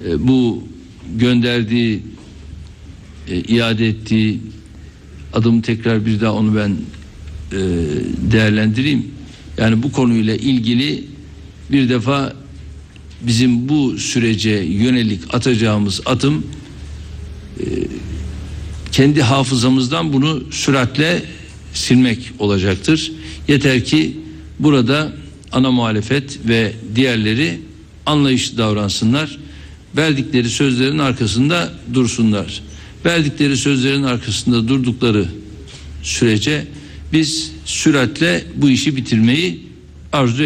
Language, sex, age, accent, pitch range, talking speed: Turkish, male, 60-79, native, 90-130 Hz, 80 wpm